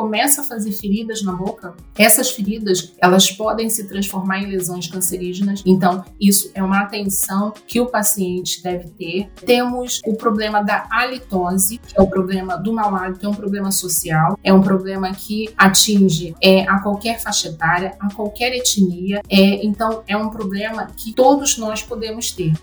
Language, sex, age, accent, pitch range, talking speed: Portuguese, female, 30-49, Brazilian, 190-240 Hz, 170 wpm